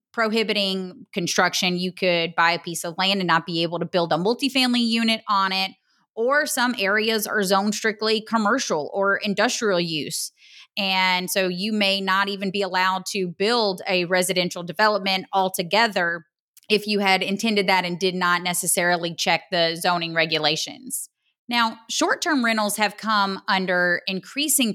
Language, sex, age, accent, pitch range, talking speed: English, female, 30-49, American, 180-215 Hz, 155 wpm